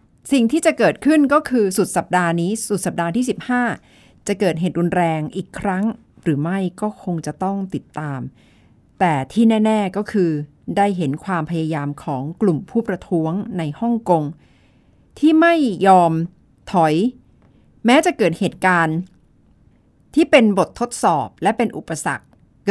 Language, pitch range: Thai, 155-220 Hz